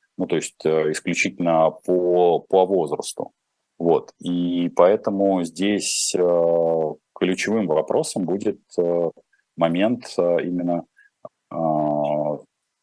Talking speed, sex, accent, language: 95 wpm, male, native, Russian